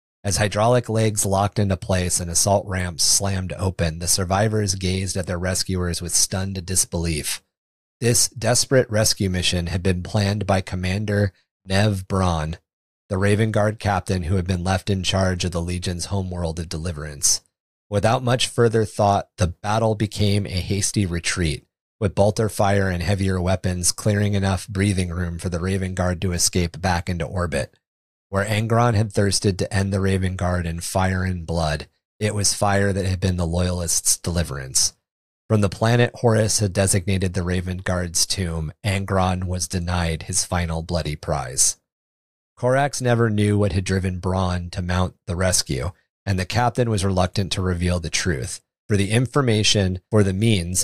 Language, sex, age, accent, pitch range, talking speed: English, male, 30-49, American, 90-105 Hz, 165 wpm